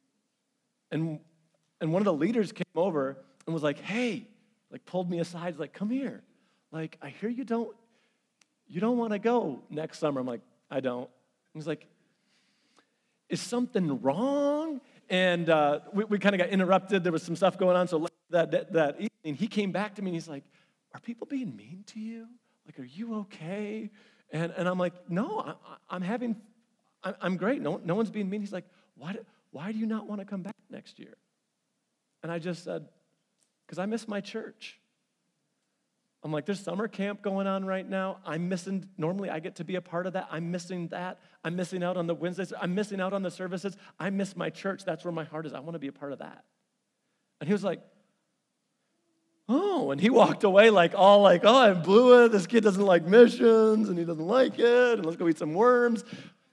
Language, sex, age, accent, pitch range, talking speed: English, male, 40-59, American, 175-230 Hz, 215 wpm